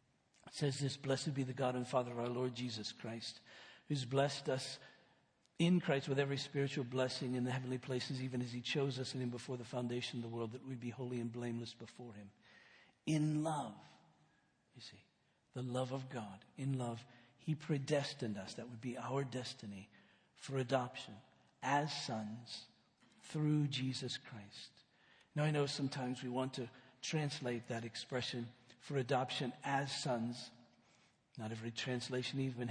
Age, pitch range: 60-79, 120-145 Hz